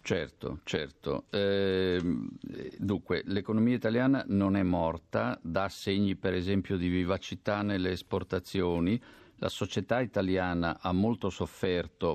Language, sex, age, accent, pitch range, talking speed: Italian, male, 50-69, native, 90-110 Hz, 115 wpm